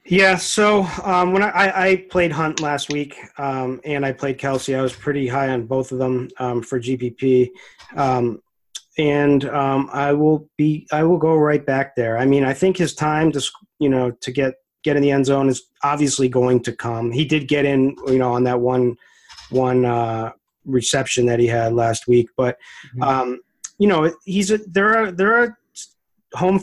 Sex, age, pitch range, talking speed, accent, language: male, 30-49, 130-155 Hz, 195 wpm, American, English